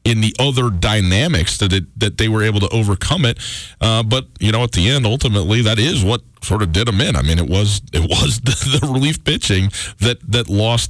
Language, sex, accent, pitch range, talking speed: English, male, American, 85-115 Hz, 225 wpm